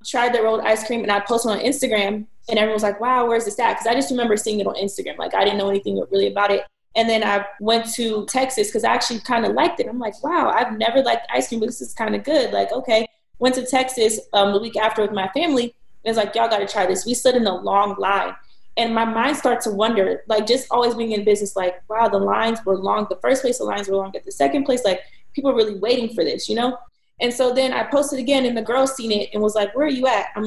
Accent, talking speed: American, 280 wpm